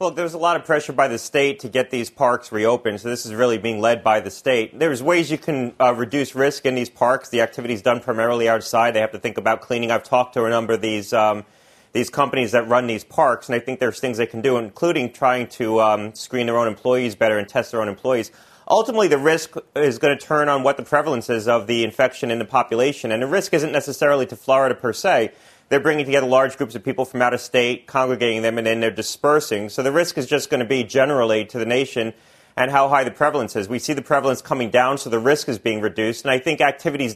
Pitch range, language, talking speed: 115-140 Hz, English, 255 wpm